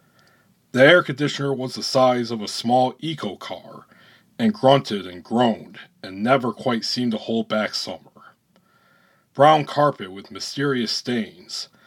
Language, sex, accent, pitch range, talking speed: English, male, American, 115-140 Hz, 135 wpm